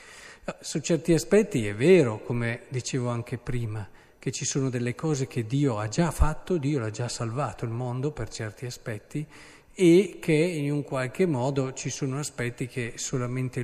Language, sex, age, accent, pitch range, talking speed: Italian, male, 50-69, native, 125-175 Hz, 170 wpm